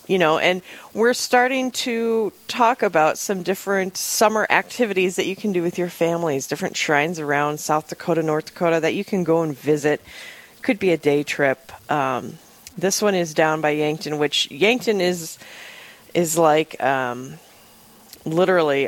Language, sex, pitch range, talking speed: English, female, 145-185 Hz, 160 wpm